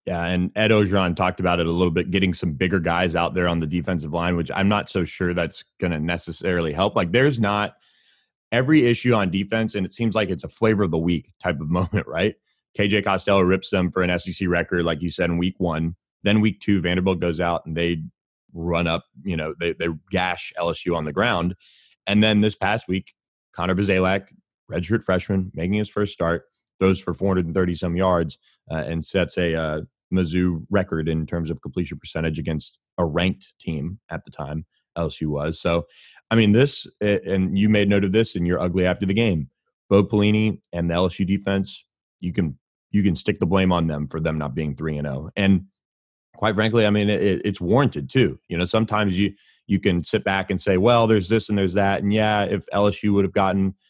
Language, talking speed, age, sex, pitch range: English, 215 wpm, 20-39, male, 85-100 Hz